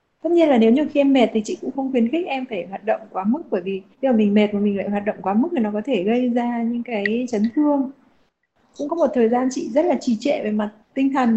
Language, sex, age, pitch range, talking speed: Vietnamese, female, 20-39, 220-275 Hz, 295 wpm